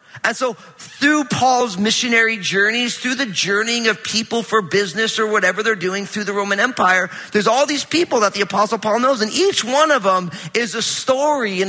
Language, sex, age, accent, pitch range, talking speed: English, male, 40-59, American, 205-260 Hz, 200 wpm